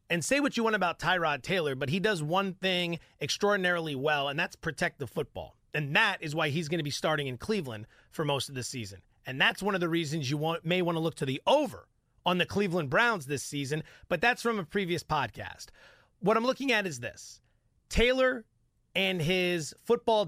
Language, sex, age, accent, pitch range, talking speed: English, male, 30-49, American, 145-195 Hz, 215 wpm